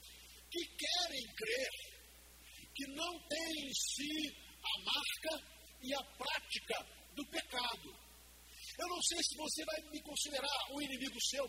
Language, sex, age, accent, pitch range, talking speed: Portuguese, male, 50-69, Brazilian, 255-310 Hz, 135 wpm